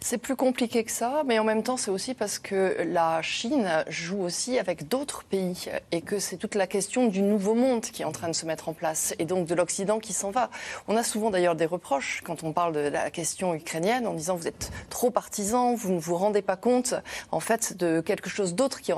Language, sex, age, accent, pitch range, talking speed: French, female, 30-49, French, 165-210 Hz, 245 wpm